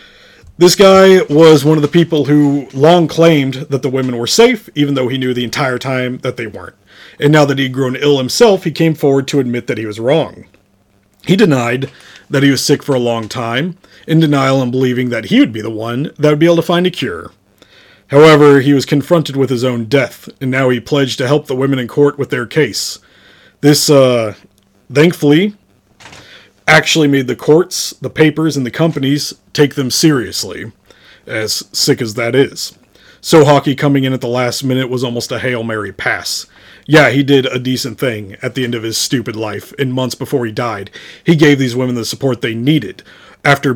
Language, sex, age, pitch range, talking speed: English, male, 30-49, 125-150 Hz, 205 wpm